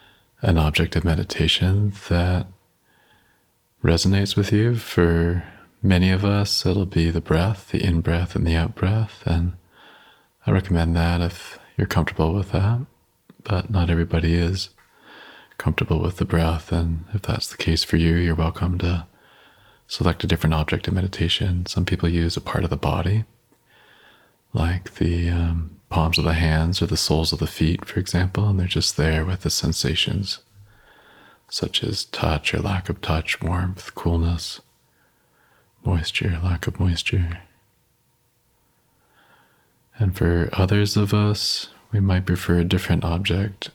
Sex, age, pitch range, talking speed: male, 30-49, 85-100 Hz, 150 wpm